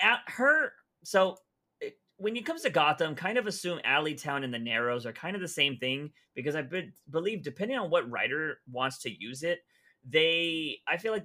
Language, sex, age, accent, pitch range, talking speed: English, male, 30-49, American, 125-175 Hz, 190 wpm